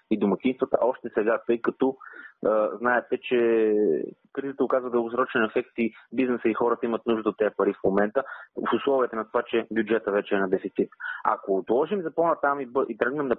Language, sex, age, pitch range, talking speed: Bulgarian, male, 30-49, 110-130 Hz, 195 wpm